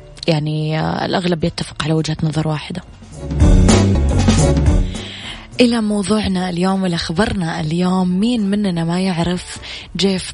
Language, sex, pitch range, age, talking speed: Arabic, female, 160-185 Hz, 20-39, 105 wpm